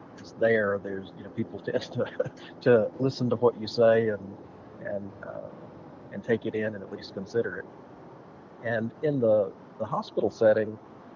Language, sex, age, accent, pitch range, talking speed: English, male, 50-69, American, 100-115 Hz, 165 wpm